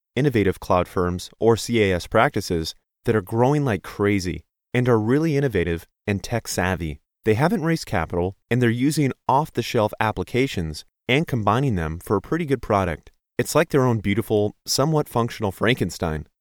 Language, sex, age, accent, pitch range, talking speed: English, male, 30-49, American, 90-130 Hz, 155 wpm